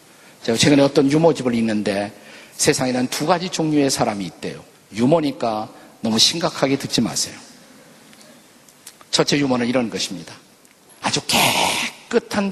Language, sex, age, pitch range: Korean, male, 50-69, 120-165 Hz